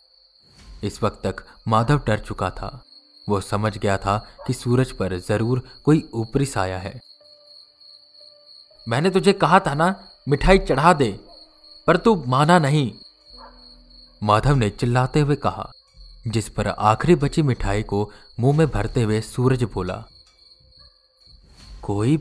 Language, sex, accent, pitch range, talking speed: Hindi, male, native, 105-150 Hz, 130 wpm